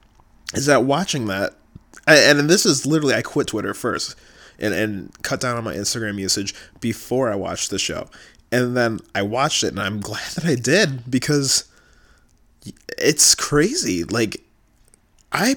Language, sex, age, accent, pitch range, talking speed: English, male, 20-39, American, 110-155 Hz, 160 wpm